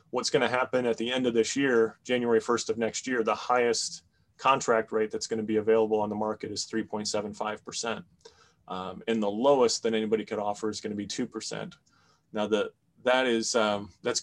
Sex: male